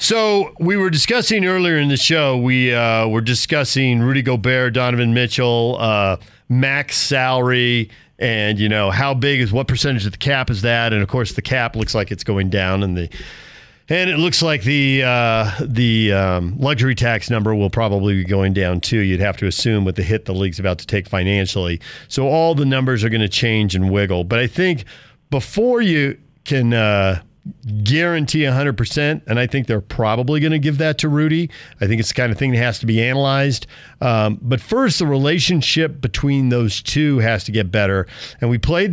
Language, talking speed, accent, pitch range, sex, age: English, 200 wpm, American, 110-140 Hz, male, 40-59